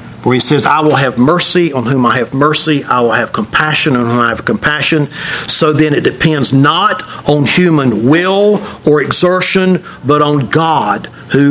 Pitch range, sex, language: 150-190 Hz, male, English